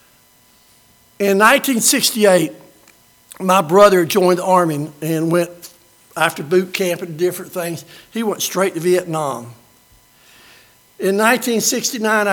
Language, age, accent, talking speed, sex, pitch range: English, 60-79, American, 105 wpm, male, 165-200 Hz